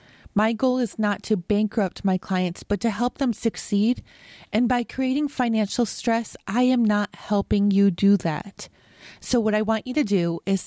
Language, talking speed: English, 185 wpm